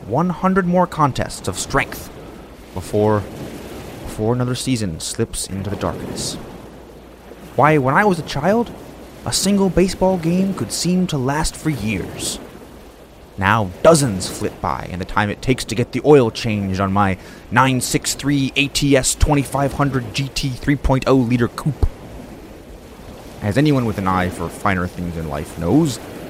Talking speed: 145 wpm